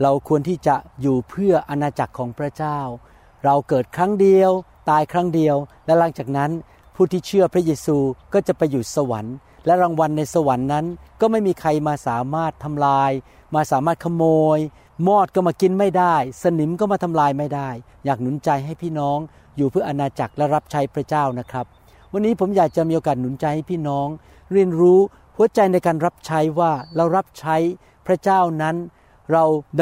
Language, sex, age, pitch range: Thai, male, 60-79, 140-185 Hz